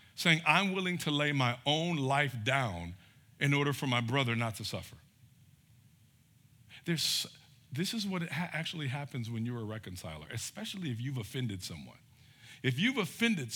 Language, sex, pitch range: English, male, 120-155 Hz